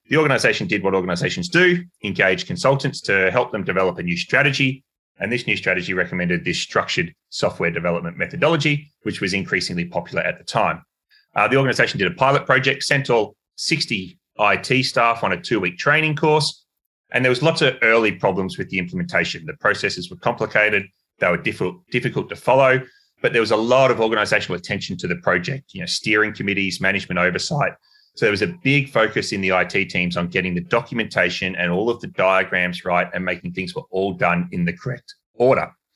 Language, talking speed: English, 195 wpm